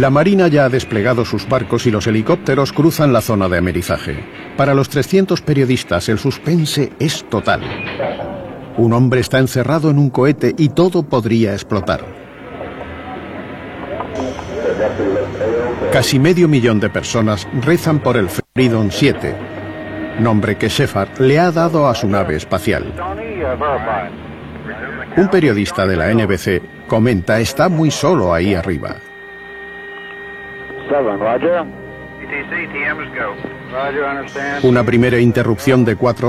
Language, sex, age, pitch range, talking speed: Spanish, male, 50-69, 105-140 Hz, 115 wpm